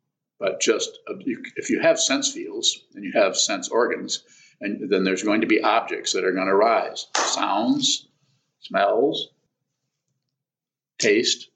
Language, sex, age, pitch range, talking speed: English, male, 50-69, 265-415 Hz, 145 wpm